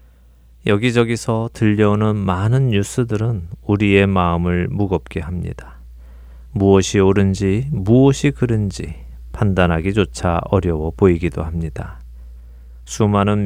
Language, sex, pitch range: Korean, male, 80-115 Hz